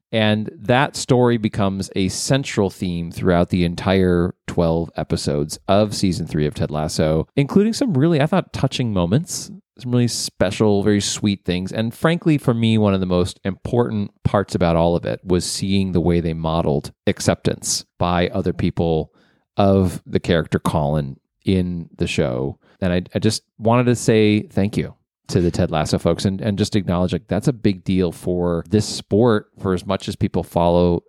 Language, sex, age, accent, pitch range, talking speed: English, male, 30-49, American, 85-105 Hz, 180 wpm